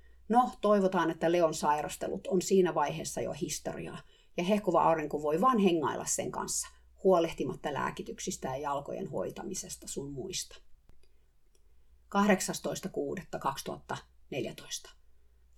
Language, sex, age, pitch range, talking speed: Finnish, female, 30-49, 155-195 Hz, 100 wpm